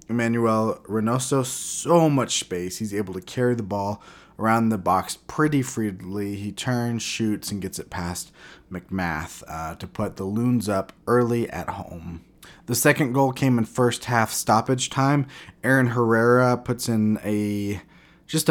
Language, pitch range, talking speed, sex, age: English, 95-120 Hz, 155 wpm, male, 20-39